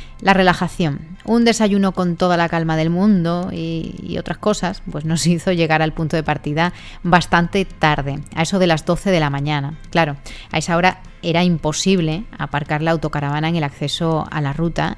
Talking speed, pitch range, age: 190 wpm, 155-205 Hz, 30-49